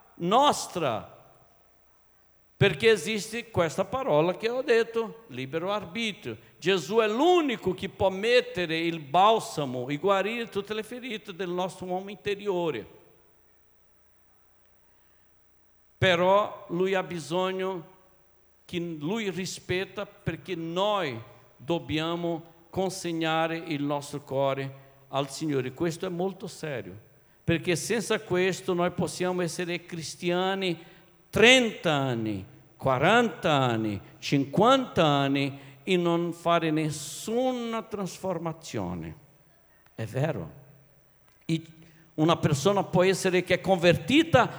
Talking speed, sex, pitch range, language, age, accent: 100 wpm, male, 150-205 Hz, Italian, 60-79, Brazilian